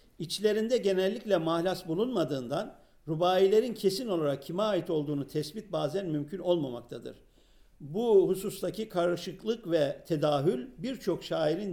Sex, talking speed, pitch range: male, 105 wpm, 140-190 Hz